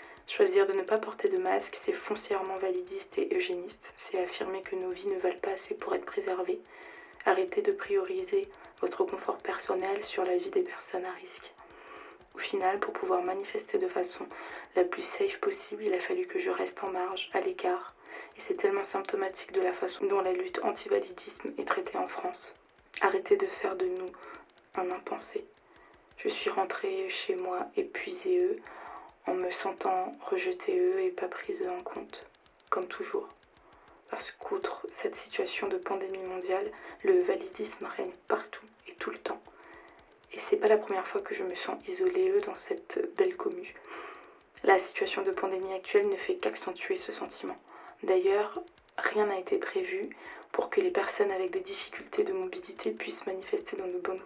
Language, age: French, 20-39